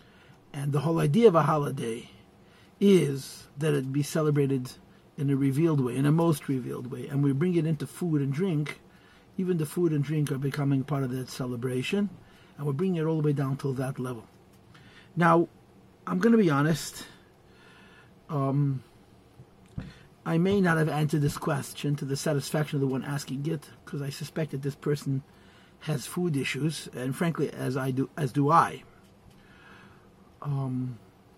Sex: male